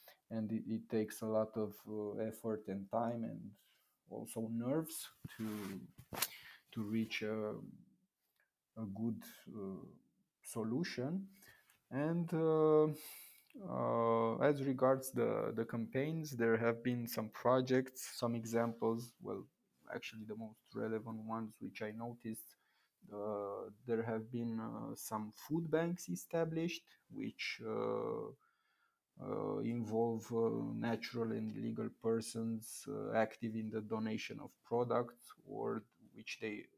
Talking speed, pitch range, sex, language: 120 wpm, 110-125 Hz, male, Italian